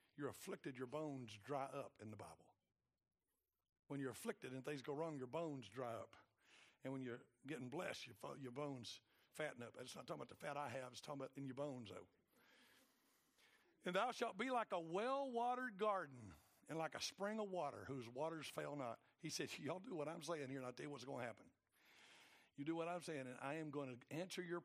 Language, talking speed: English, 220 wpm